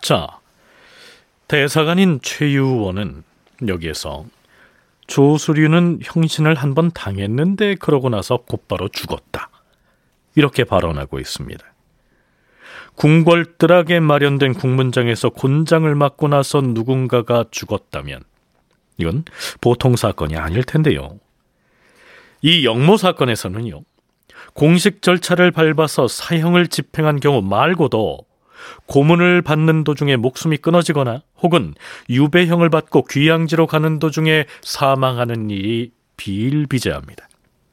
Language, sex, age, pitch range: Korean, male, 40-59, 120-165 Hz